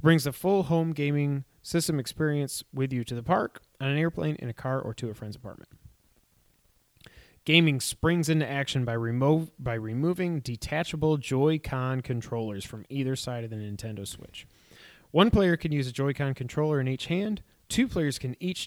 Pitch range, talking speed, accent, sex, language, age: 120-155 Hz, 175 wpm, American, male, English, 30-49